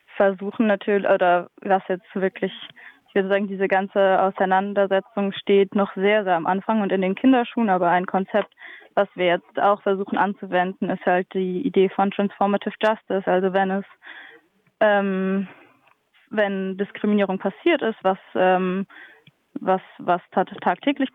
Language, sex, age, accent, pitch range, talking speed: German, female, 20-39, German, 185-205 Hz, 145 wpm